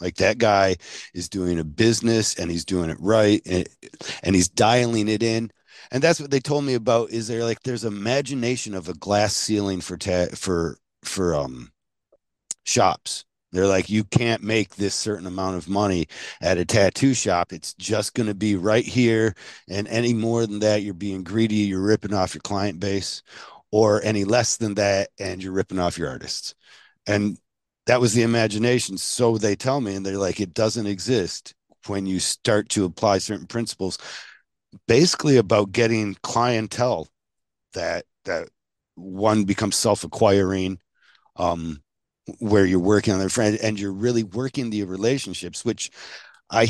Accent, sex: American, male